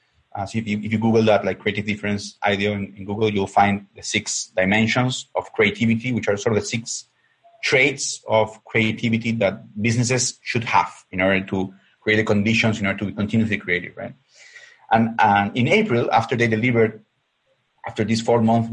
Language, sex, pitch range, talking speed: English, male, 105-125 Hz, 185 wpm